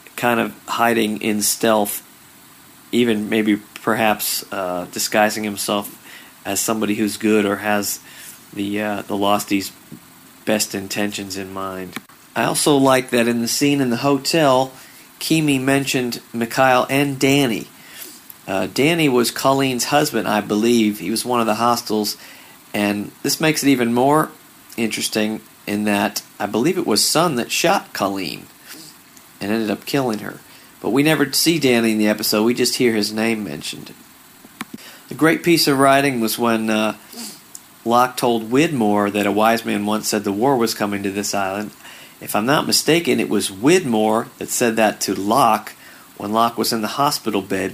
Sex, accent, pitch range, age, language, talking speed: male, American, 105-125 Hz, 40-59, English, 165 wpm